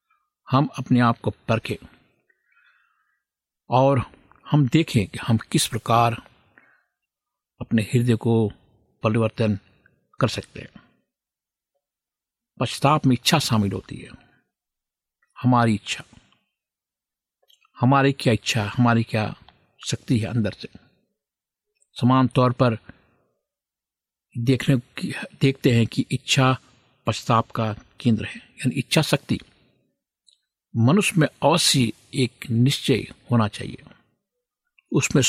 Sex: male